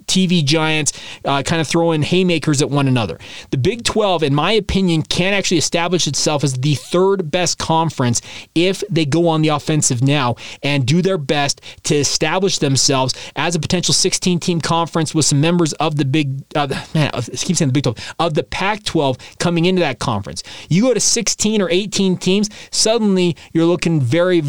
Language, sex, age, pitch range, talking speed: English, male, 30-49, 140-185 Hz, 190 wpm